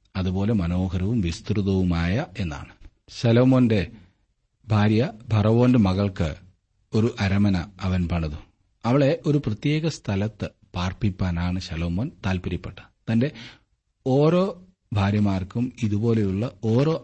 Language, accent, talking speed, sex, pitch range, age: Malayalam, native, 85 wpm, male, 95-120 Hz, 30-49